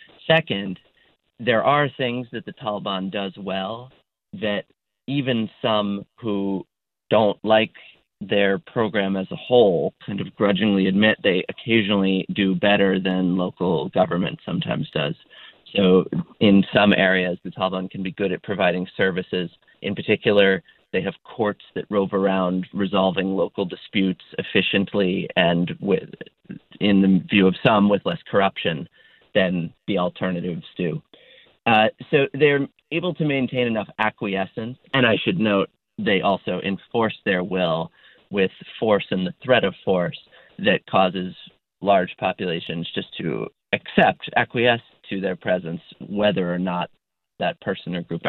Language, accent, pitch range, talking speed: English, American, 95-110 Hz, 140 wpm